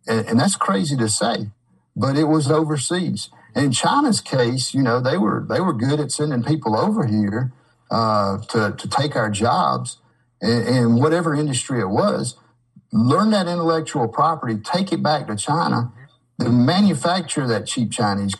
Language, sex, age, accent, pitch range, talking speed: English, male, 50-69, American, 115-160 Hz, 165 wpm